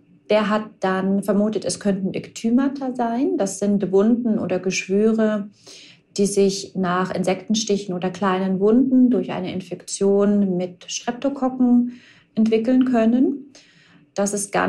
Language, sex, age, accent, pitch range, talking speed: German, female, 30-49, German, 190-225 Hz, 125 wpm